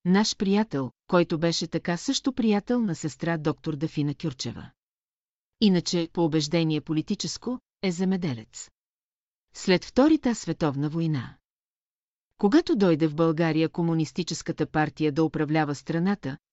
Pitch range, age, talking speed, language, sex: 155-185 Hz, 40-59, 115 wpm, Bulgarian, female